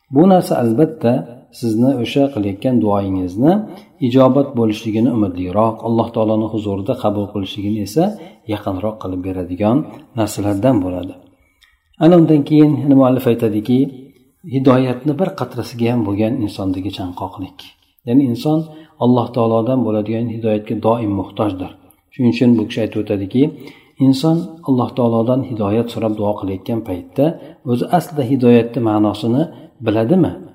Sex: male